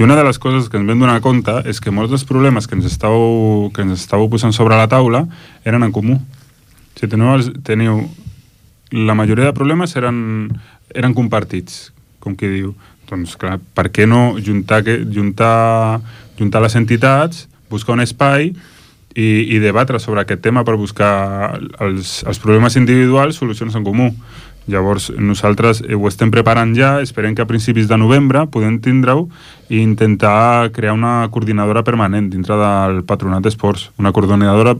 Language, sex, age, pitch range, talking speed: Italian, male, 20-39, 105-120 Hz, 155 wpm